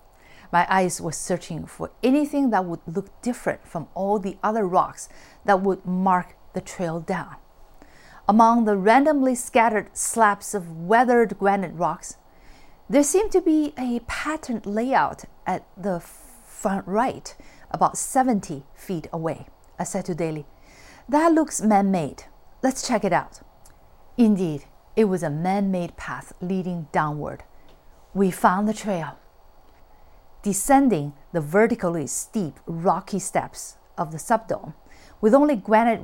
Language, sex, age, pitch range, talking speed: English, female, 40-59, 165-225 Hz, 135 wpm